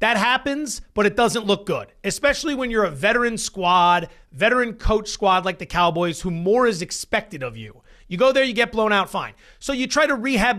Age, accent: 30-49, American